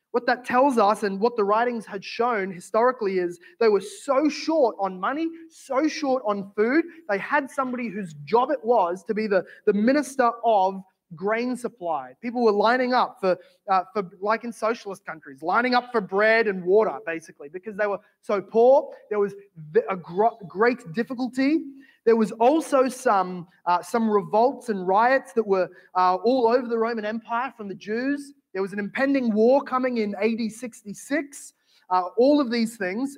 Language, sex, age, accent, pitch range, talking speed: English, male, 20-39, Australian, 195-245 Hz, 180 wpm